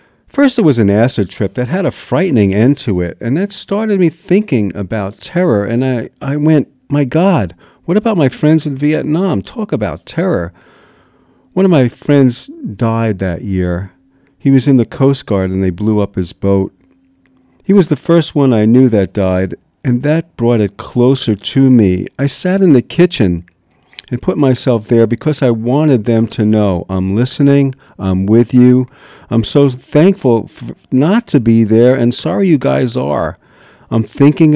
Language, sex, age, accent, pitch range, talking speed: English, male, 50-69, American, 105-155 Hz, 180 wpm